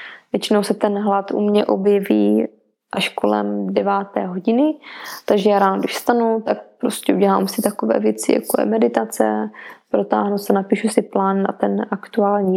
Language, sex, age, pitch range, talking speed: Czech, female, 20-39, 195-215 Hz, 160 wpm